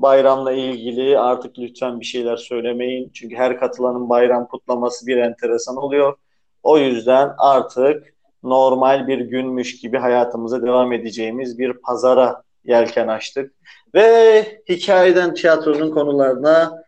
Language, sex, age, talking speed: Turkish, male, 40-59, 115 wpm